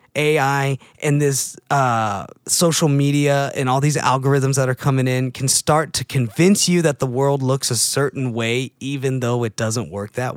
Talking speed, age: 185 wpm, 20-39